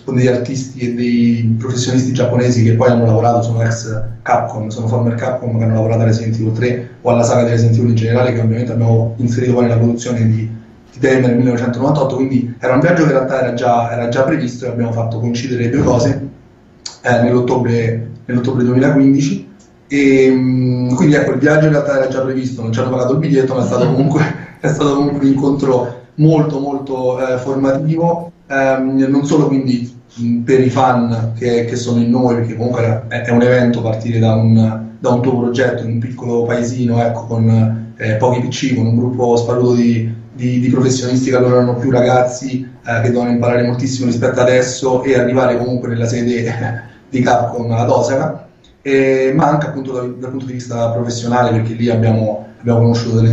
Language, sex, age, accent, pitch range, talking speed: Italian, male, 30-49, native, 115-130 Hz, 190 wpm